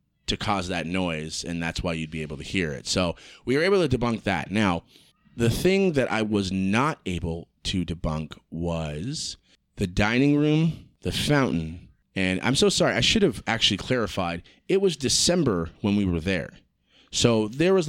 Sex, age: male, 30-49